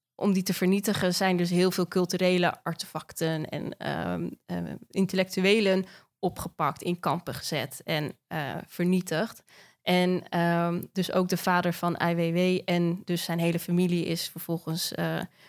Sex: female